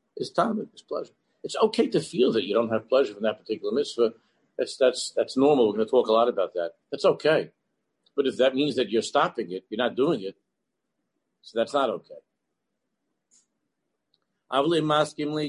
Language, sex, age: English, male, 50-69